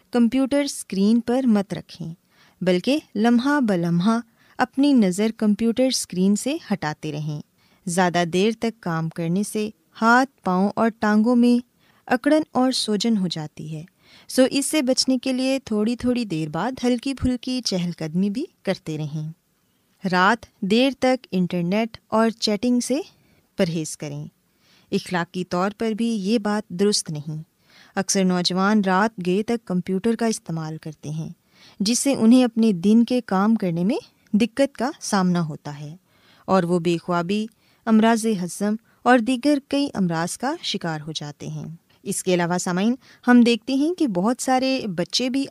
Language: Urdu